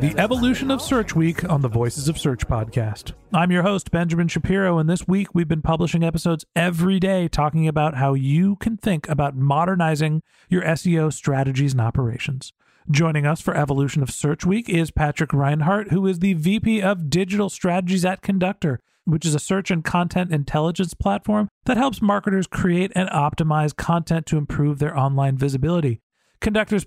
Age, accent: 40-59, American